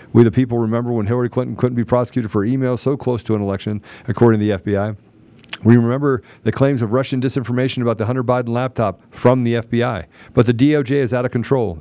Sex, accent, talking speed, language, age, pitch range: male, American, 220 wpm, English, 40-59, 120-145 Hz